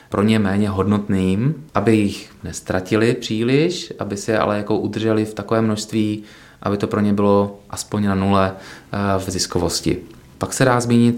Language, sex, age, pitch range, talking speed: Czech, male, 20-39, 100-110 Hz, 160 wpm